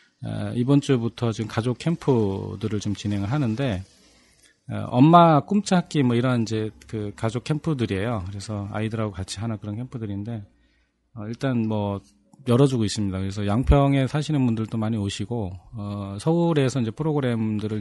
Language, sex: Korean, male